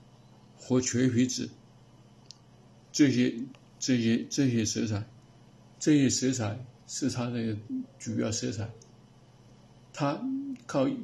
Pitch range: 110-125 Hz